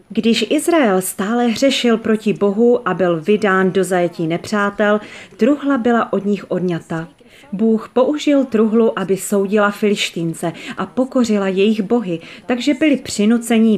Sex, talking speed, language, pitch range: female, 130 wpm, Slovak, 175-230 Hz